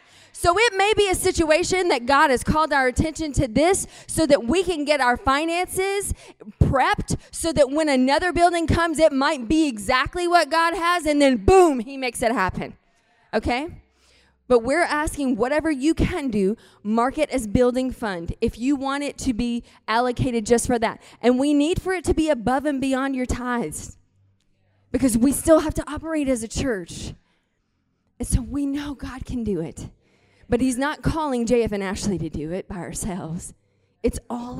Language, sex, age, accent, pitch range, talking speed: English, female, 20-39, American, 230-320 Hz, 185 wpm